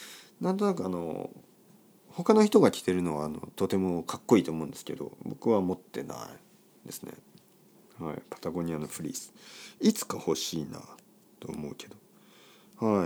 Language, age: Japanese, 50-69